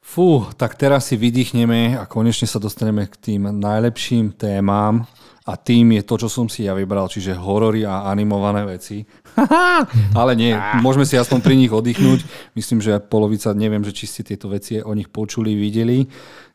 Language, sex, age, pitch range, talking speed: Slovak, male, 40-59, 105-120 Hz, 170 wpm